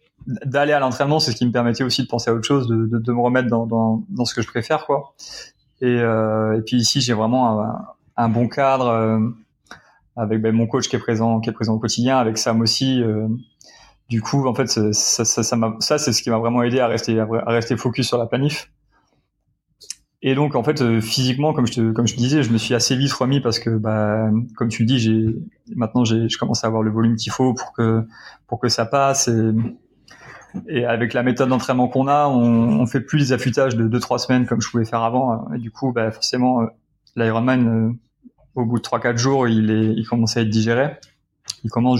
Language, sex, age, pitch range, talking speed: French, male, 20-39, 115-130 Hz, 235 wpm